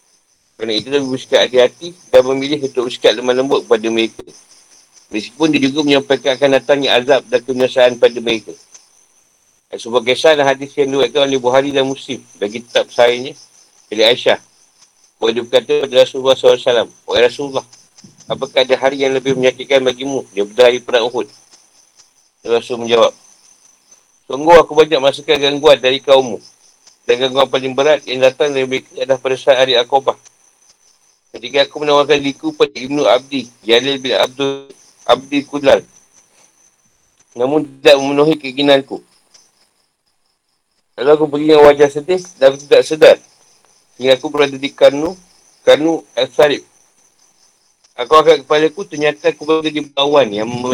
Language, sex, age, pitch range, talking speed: Malay, male, 50-69, 130-155 Hz, 140 wpm